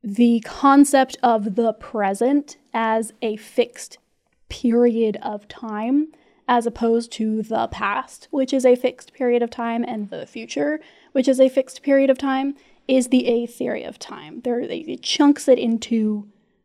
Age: 10-29